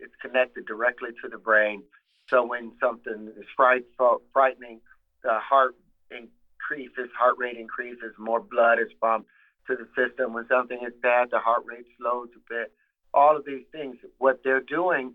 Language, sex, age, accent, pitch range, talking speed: English, male, 50-69, American, 115-130 Hz, 165 wpm